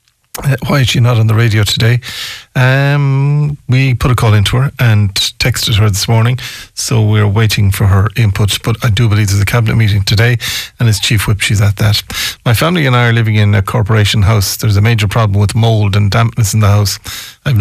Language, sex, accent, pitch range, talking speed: English, male, Irish, 105-125 Hz, 220 wpm